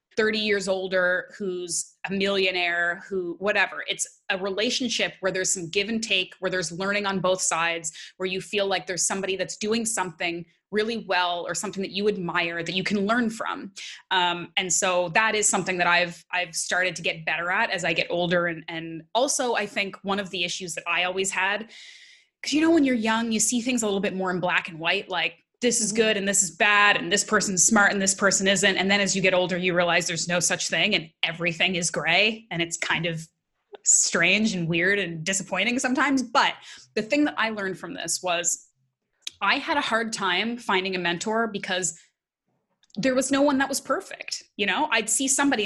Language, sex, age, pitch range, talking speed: English, female, 20-39, 175-220 Hz, 215 wpm